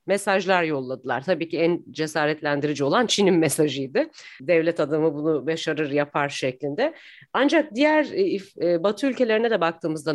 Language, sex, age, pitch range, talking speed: Turkish, female, 40-59, 160-235 Hz, 125 wpm